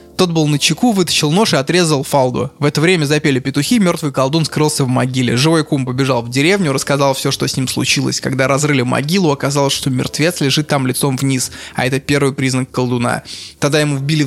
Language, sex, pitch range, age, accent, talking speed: Russian, male, 125-155 Hz, 20-39, native, 205 wpm